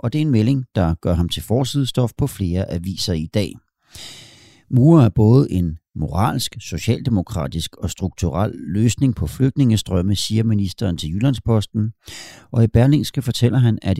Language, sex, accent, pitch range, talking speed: Danish, male, native, 85-115 Hz, 155 wpm